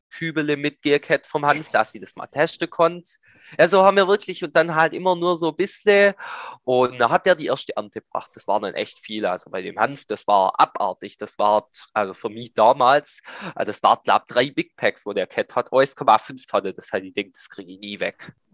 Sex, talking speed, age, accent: male, 230 wpm, 20-39, German